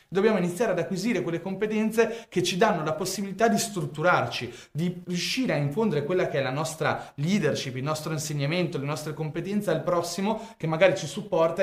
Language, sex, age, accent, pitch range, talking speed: Italian, male, 30-49, native, 150-190 Hz, 180 wpm